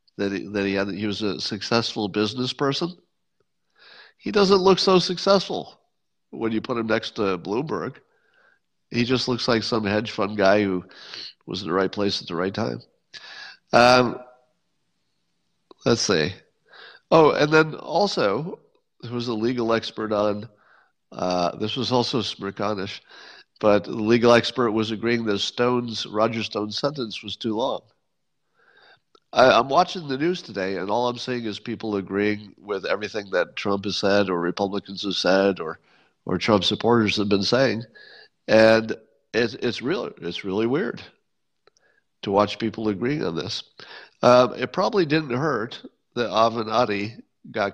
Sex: male